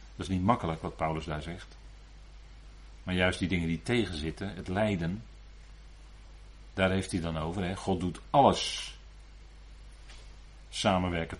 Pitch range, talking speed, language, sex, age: 80-105 Hz, 130 wpm, Dutch, male, 40-59